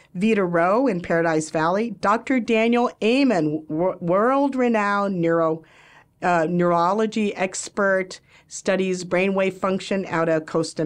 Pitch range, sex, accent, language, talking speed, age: 170-230 Hz, female, American, English, 110 wpm, 50-69